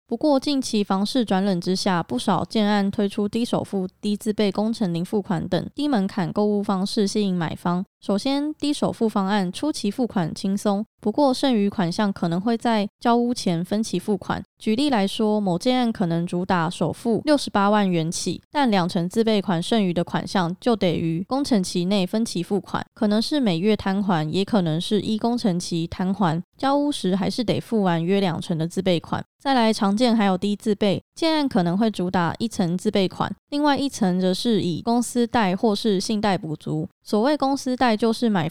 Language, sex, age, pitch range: Chinese, female, 20-39, 185-230 Hz